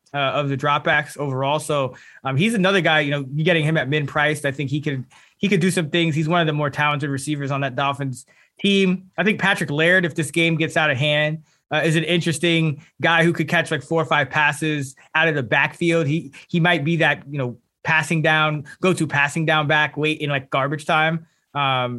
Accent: American